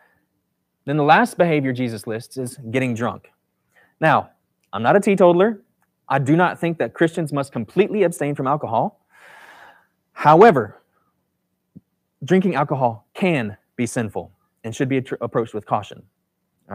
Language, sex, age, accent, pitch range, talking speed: English, male, 20-39, American, 125-180 Hz, 135 wpm